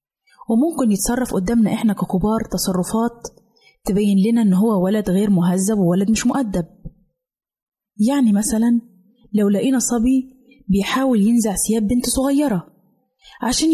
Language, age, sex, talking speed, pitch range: Arabic, 20-39, female, 120 wpm, 195-250 Hz